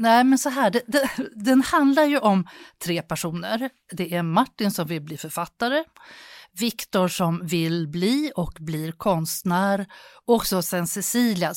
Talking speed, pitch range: 150 wpm, 180-245 Hz